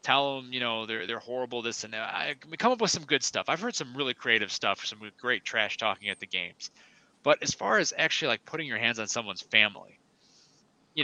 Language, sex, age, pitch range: English, male, 30-49, 105-150 Hz